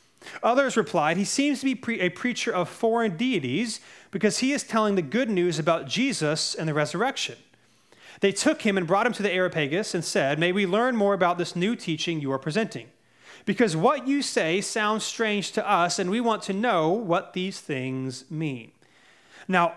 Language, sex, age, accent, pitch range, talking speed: English, male, 30-49, American, 170-215 Hz, 190 wpm